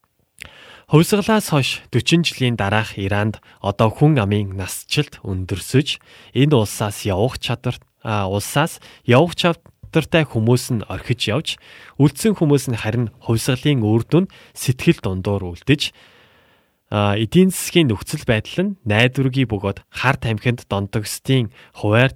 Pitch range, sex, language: 105-145 Hz, male, Korean